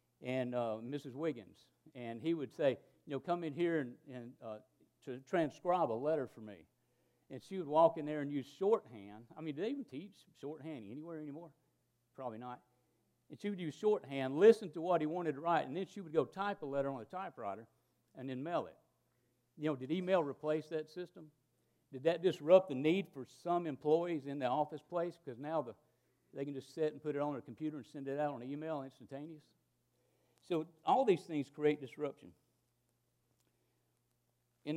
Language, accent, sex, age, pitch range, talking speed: English, American, male, 50-69, 120-155 Hz, 200 wpm